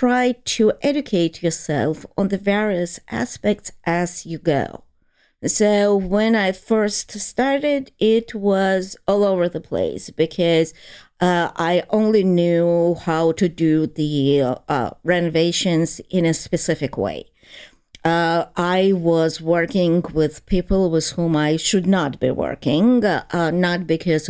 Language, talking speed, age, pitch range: English, 130 wpm, 50-69, 165-205 Hz